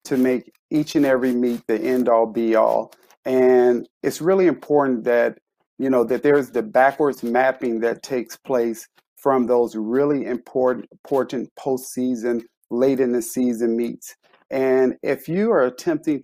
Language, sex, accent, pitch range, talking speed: English, male, American, 120-145 Hz, 135 wpm